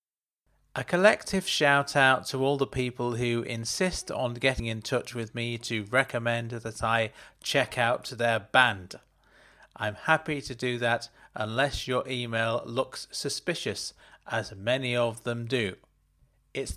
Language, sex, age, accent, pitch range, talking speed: English, male, 40-59, British, 110-145 Hz, 140 wpm